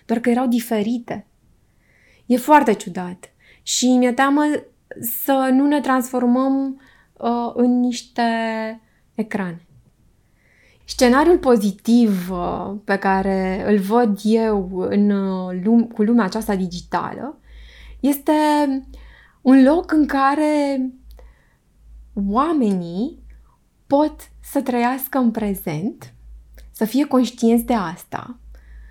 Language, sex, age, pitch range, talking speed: Romanian, female, 20-39, 205-270 Hz, 100 wpm